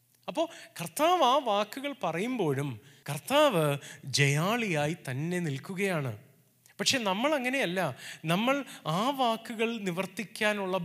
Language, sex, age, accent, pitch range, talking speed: Malayalam, male, 30-49, native, 140-215 Hz, 90 wpm